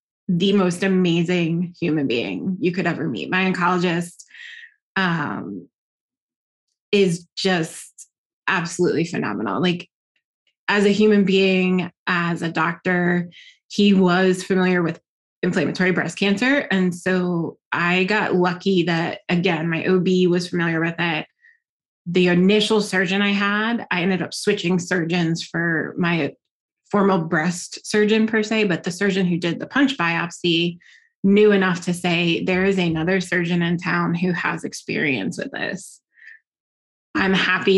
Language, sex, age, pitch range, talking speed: English, female, 20-39, 170-200 Hz, 135 wpm